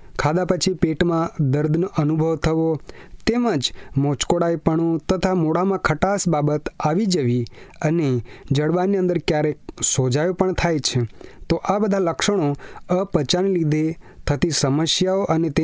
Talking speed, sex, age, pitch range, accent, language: 95 wpm, male, 30-49, 150-190 Hz, native, Hindi